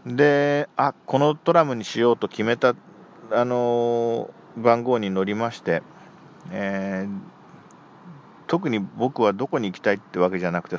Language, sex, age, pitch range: Japanese, male, 50-69, 90-140 Hz